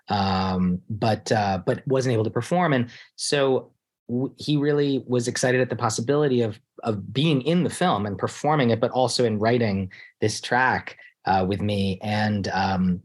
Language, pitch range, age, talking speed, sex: English, 110-130 Hz, 30-49, 175 wpm, male